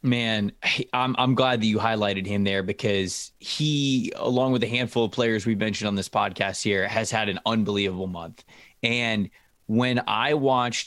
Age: 20-39